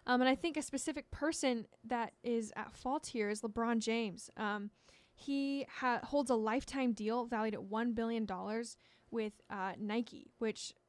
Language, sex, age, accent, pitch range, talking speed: English, female, 10-29, American, 220-250 Hz, 165 wpm